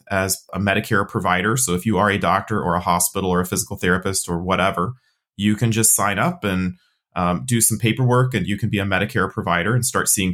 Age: 30-49